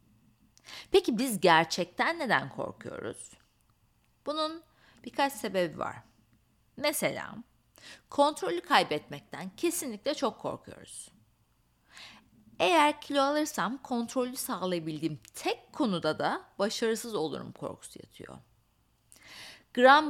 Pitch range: 155-240 Hz